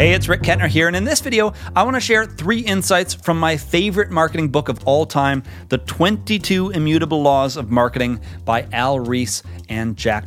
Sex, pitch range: male, 125-165 Hz